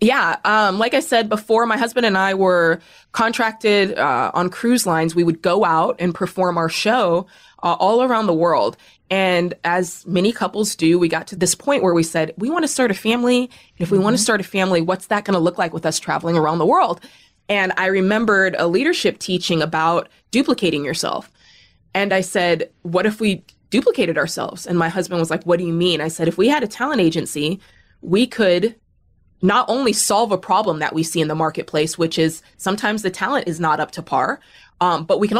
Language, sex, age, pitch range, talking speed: English, female, 20-39, 170-220 Hz, 220 wpm